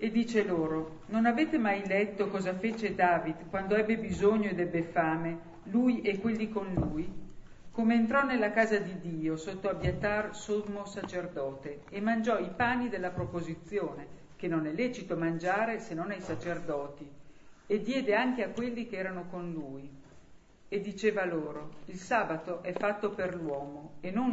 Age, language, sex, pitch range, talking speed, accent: 50-69, Italian, female, 155-210 Hz, 165 wpm, native